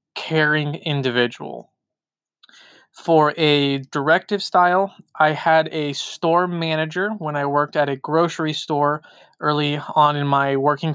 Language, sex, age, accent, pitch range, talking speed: English, male, 20-39, American, 140-165 Hz, 125 wpm